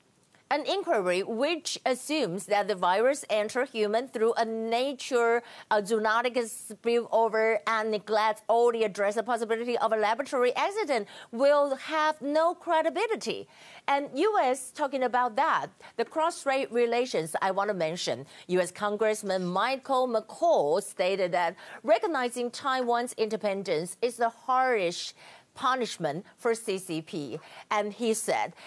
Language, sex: Chinese, female